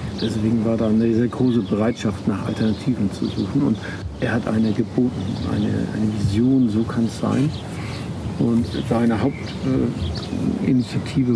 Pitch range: 110-130 Hz